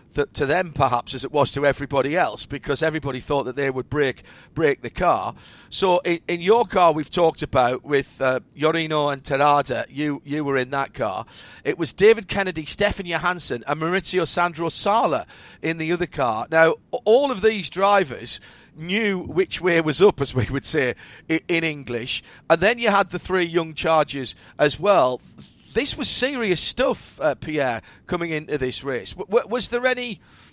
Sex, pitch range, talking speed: male, 145-205 Hz, 180 wpm